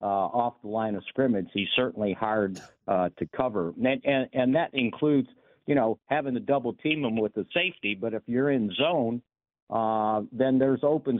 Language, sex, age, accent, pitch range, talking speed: English, male, 60-79, American, 105-125 Hz, 195 wpm